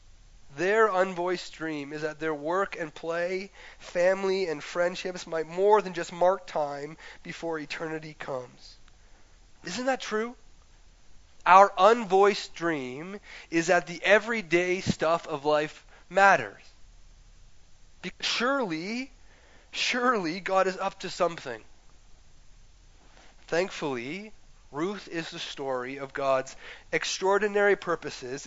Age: 30-49